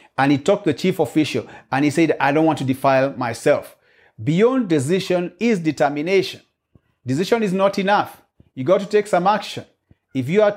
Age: 50-69